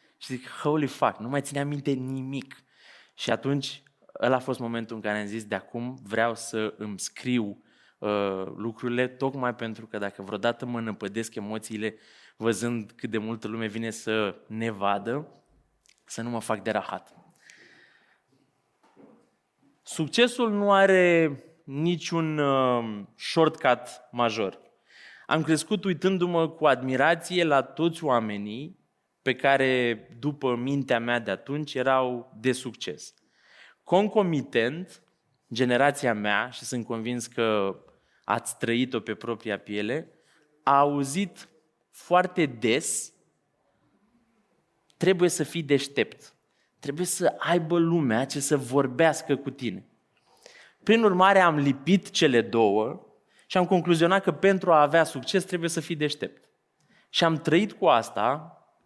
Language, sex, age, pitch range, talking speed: Romanian, male, 20-39, 115-165 Hz, 130 wpm